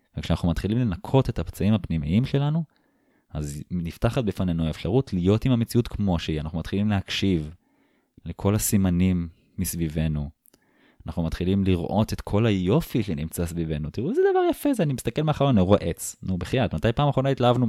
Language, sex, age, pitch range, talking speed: Hebrew, male, 20-39, 80-110 Hz, 160 wpm